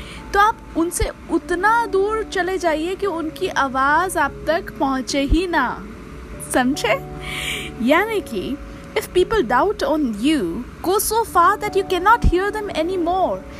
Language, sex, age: Hindi, female, 20-39